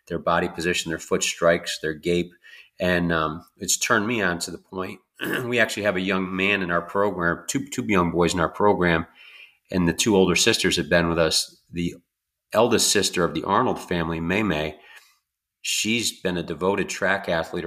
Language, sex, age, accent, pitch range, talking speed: English, male, 40-59, American, 85-95 Hz, 190 wpm